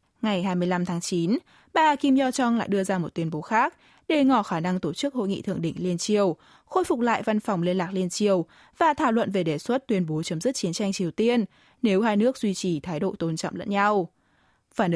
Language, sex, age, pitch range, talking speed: Vietnamese, female, 20-39, 180-250 Hz, 245 wpm